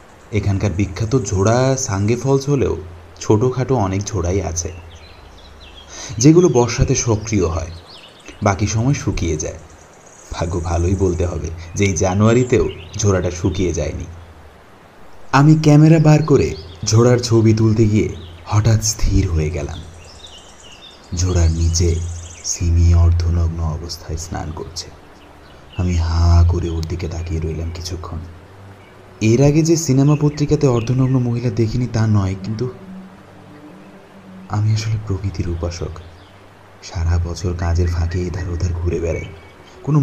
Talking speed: 115 wpm